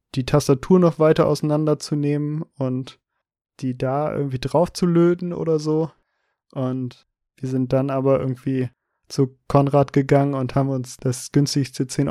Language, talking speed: German, 145 wpm